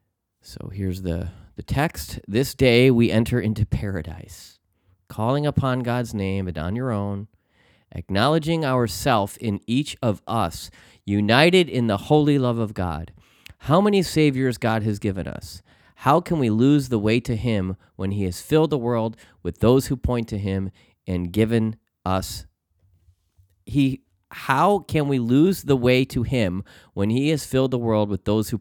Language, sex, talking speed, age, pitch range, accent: English, male, 170 wpm, 30-49, 90-125 Hz, American